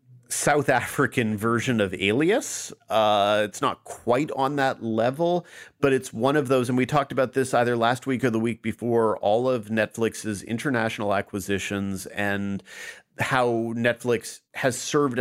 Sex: male